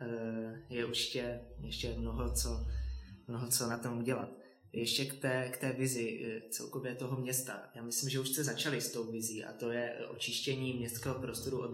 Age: 20-39